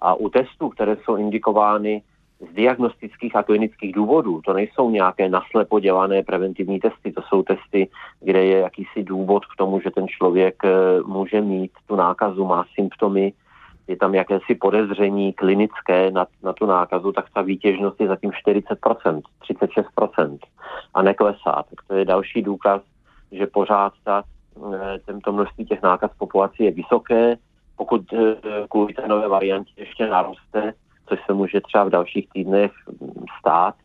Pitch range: 95-105 Hz